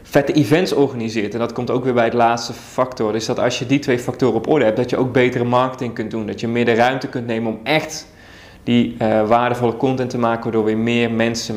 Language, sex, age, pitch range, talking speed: Dutch, male, 20-39, 110-130 Hz, 255 wpm